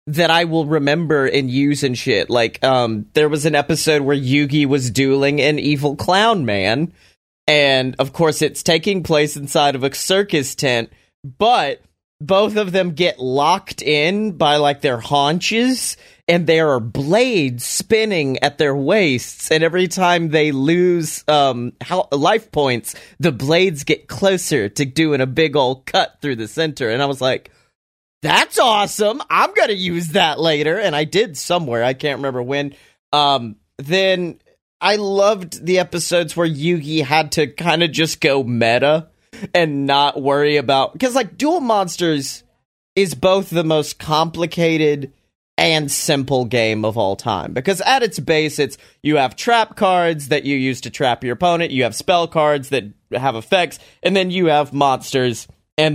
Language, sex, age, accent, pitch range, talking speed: English, male, 30-49, American, 135-175 Hz, 165 wpm